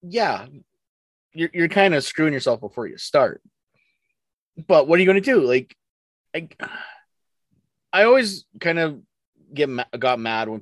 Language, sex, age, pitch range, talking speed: English, male, 30-49, 115-150 Hz, 155 wpm